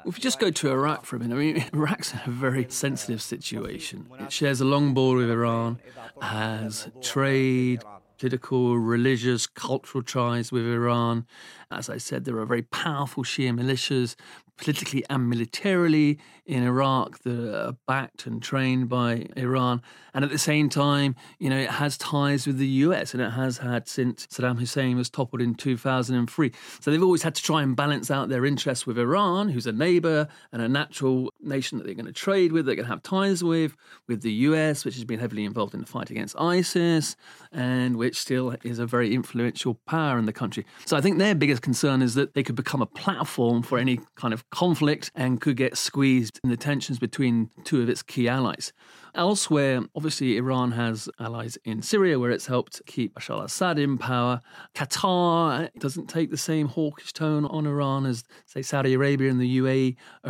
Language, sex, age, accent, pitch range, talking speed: English, male, 40-59, British, 120-145 Hz, 195 wpm